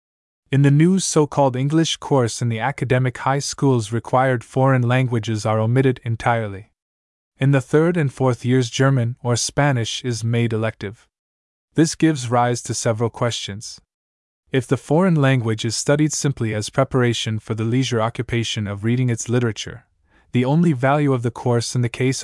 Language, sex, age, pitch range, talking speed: English, male, 20-39, 110-135 Hz, 165 wpm